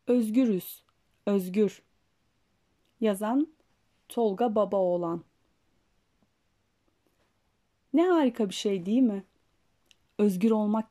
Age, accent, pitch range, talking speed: 30-49, native, 190-255 Hz, 70 wpm